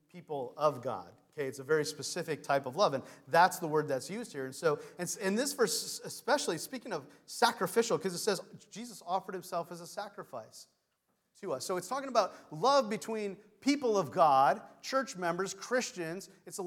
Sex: male